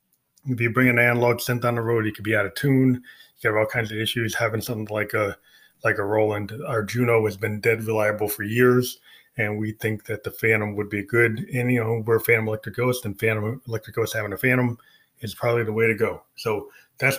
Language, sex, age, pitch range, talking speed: English, male, 20-39, 110-125 Hz, 235 wpm